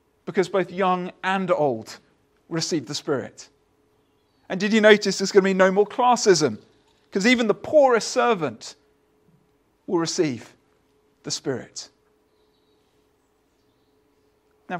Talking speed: 120 wpm